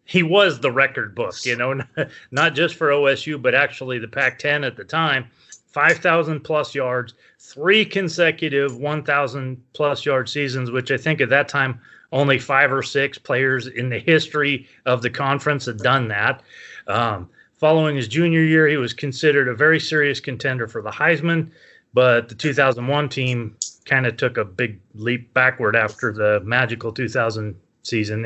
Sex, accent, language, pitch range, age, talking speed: male, American, English, 120-150 Hz, 30-49, 160 wpm